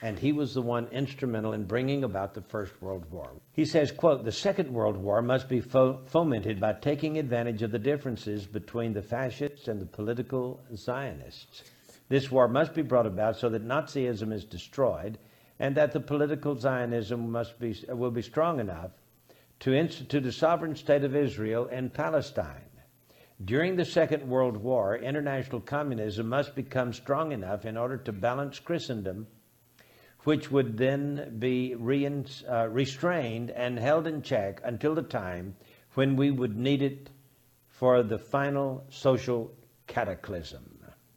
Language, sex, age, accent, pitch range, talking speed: English, male, 60-79, American, 110-140 Hz, 155 wpm